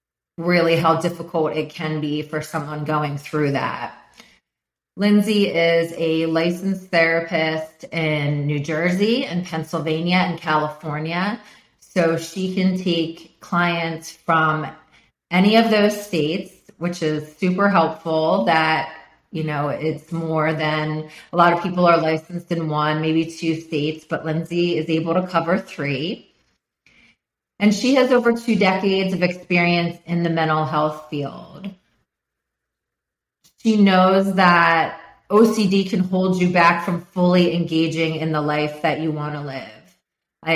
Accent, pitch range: American, 155-180 Hz